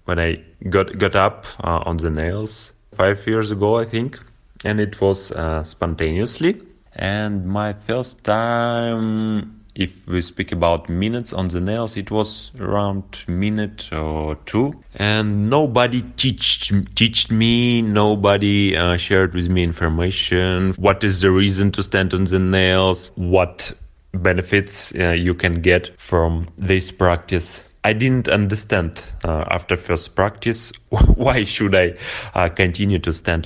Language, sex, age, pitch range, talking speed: German, male, 30-49, 90-110 Hz, 145 wpm